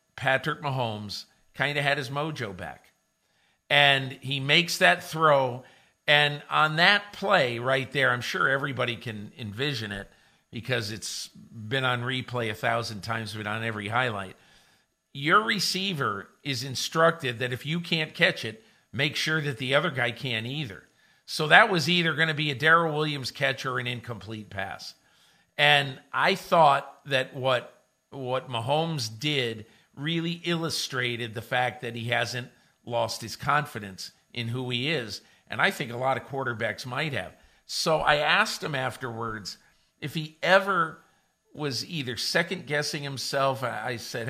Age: 50-69